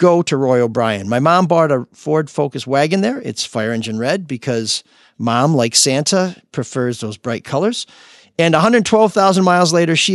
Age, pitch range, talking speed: 50-69, 130-175 Hz, 170 wpm